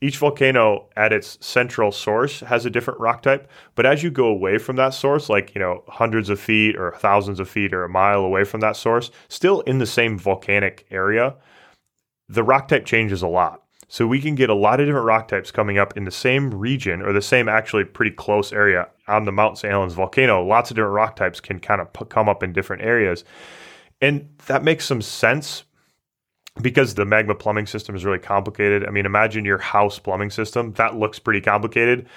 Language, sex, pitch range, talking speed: English, male, 100-130 Hz, 210 wpm